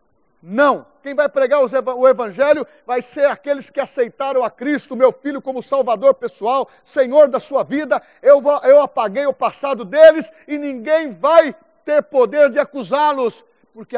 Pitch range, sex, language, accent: 240-295 Hz, male, Portuguese, Brazilian